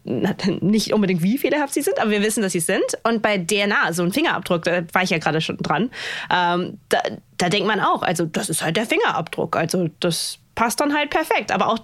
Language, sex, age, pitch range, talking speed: German, female, 20-39, 180-225 Hz, 235 wpm